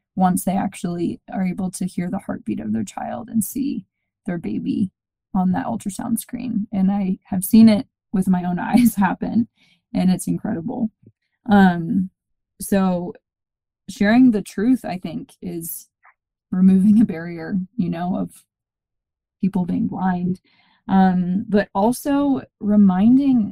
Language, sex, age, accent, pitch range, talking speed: English, female, 20-39, American, 185-225 Hz, 140 wpm